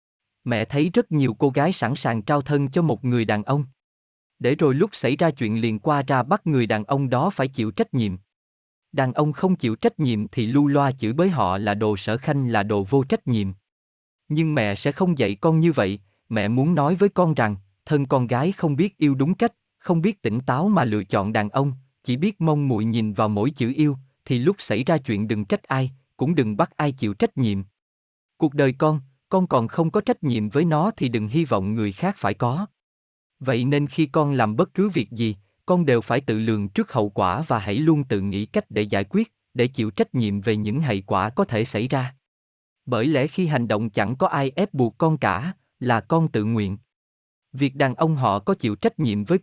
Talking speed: 230 wpm